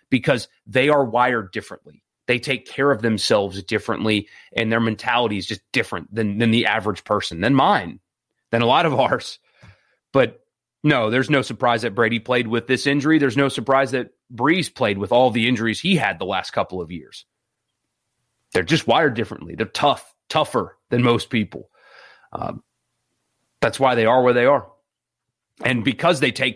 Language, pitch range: English, 110-140 Hz